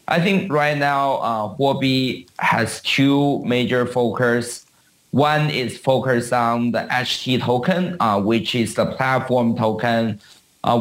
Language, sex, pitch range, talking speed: English, male, 115-130 Hz, 135 wpm